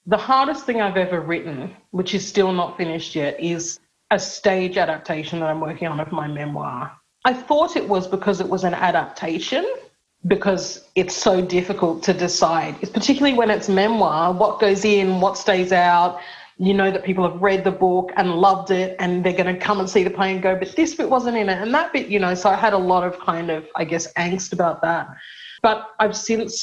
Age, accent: 30-49, Australian